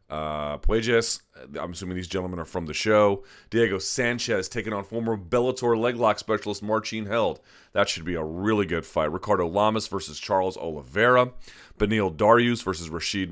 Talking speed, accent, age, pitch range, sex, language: 165 wpm, American, 30-49, 90-115 Hz, male, English